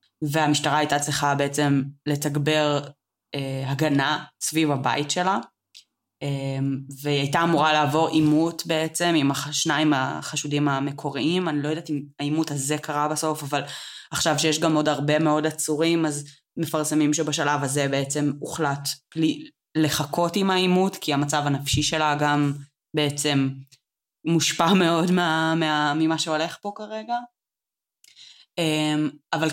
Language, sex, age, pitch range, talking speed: Hebrew, female, 20-39, 140-160 Hz, 120 wpm